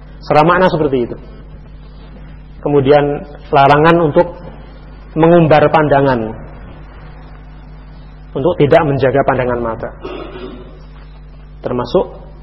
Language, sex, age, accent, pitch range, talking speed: Indonesian, male, 40-59, native, 130-165 Hz, 70 wpm